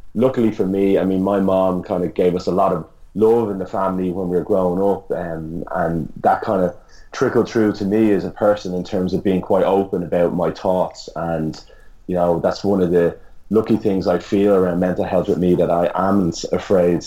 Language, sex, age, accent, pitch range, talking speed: English, male, 30-49, British, 90-100 Hz, 225 wpm